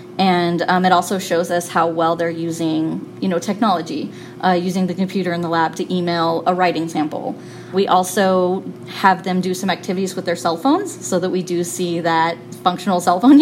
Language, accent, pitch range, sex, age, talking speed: English, American, 170-215 Hz, female, 20-39, 200 wpm